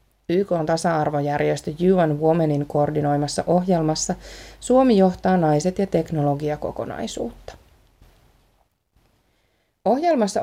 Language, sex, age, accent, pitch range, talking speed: Finnish, female, 30-49, native, 150-185 Hz, 75 wpm